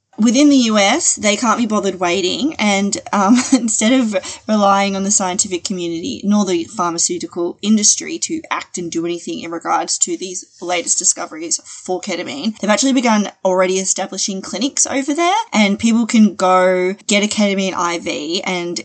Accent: Australian